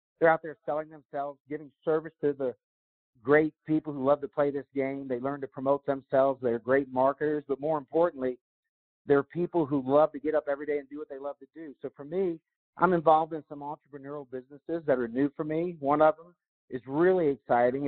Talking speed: 215 wpm